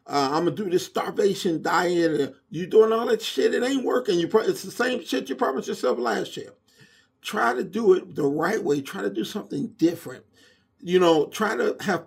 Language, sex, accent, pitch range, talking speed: English, male, American, 140-200 Hz, 230 wpm